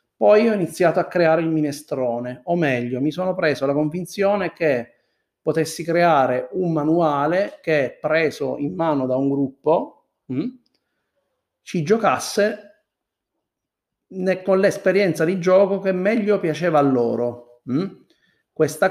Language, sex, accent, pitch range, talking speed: Italian, male, native, 135-165 Hz, 120 wpm